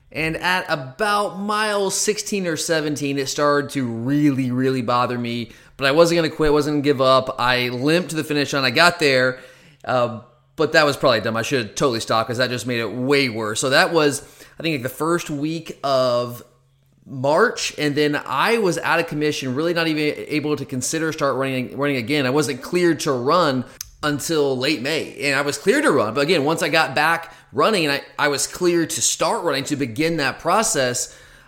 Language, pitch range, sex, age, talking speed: English, 130-165 Hz, male, 30-49, 210 wpm